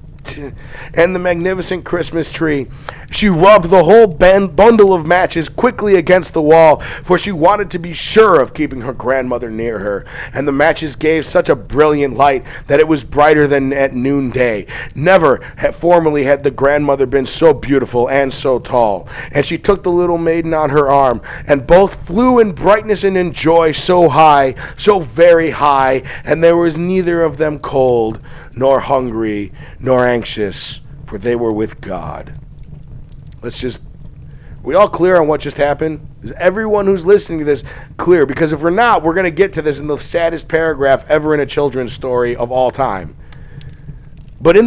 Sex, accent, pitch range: male, American, 135-175 Hz